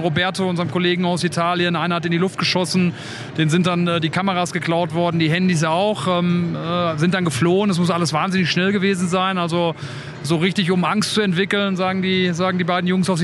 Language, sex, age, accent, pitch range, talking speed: German, male, 30-49, German, 160-180 Hz, 215 wpm